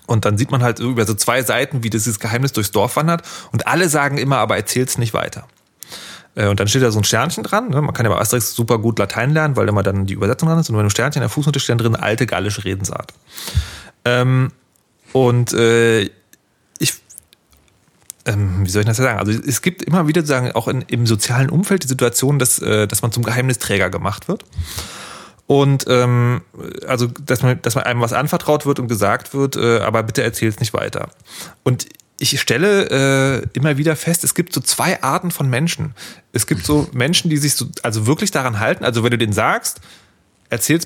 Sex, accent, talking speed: male, German, 205 wpm